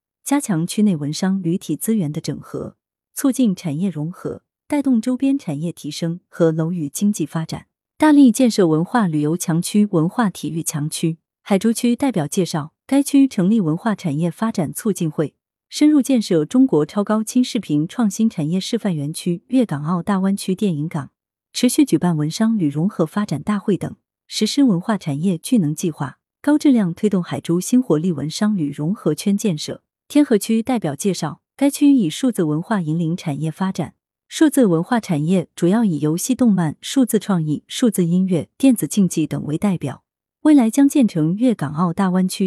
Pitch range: 160-225 Hz